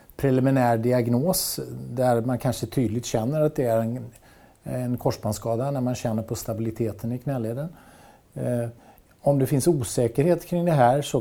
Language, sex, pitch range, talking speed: Swedish, male, 110-135 Hz, 150 wpm